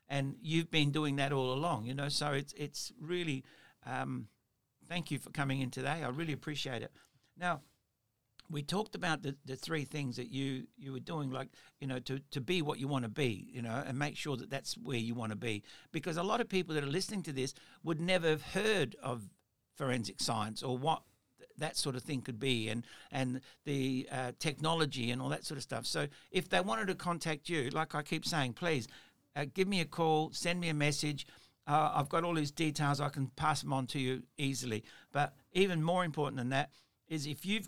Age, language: 60-79, English